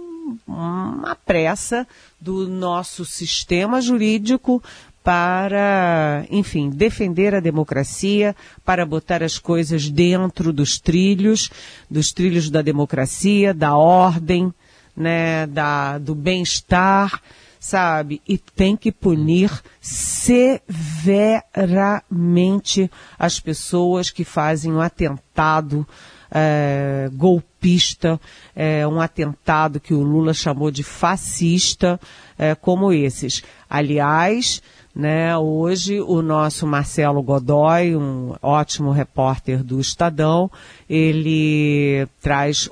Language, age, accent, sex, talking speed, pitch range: Portuguese, 40-59, Brazilian, female, 90 wpm, 150-185 Hz